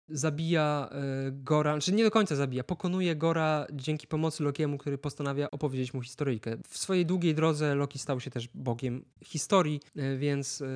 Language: Polish